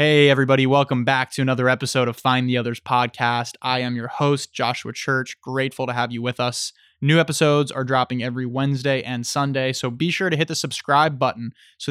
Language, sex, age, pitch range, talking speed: English, male, 20-39, 125-140 Hz, 205 wpm